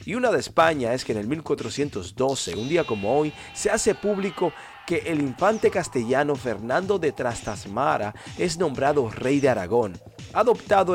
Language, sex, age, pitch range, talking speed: Spanish, male, 40-59, 120-165 Hz, 160 wpm